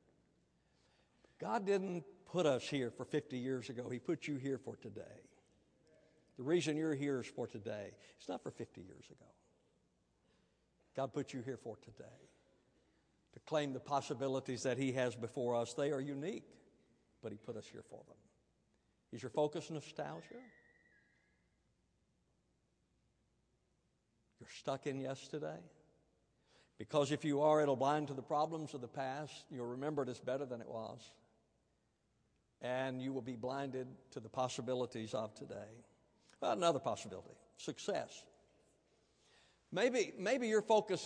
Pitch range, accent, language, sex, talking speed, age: 135-180 Hz, American, English, male, 145 wpm, 60-79